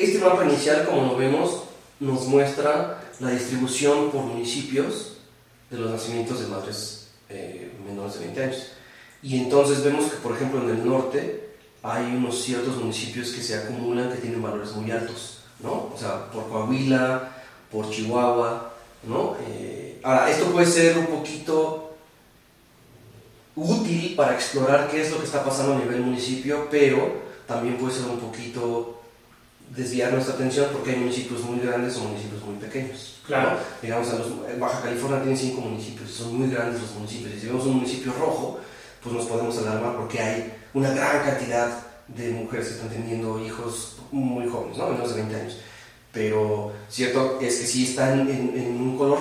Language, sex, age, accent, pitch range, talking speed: Spanish, male, 30-49, Mexican, 115-135 Hz, 175 wpm